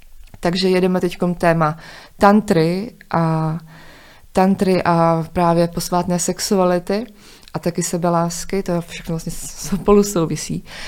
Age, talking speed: 20-39, 110 wpm